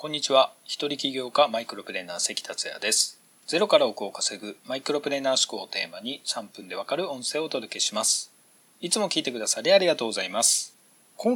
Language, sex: Japanese, male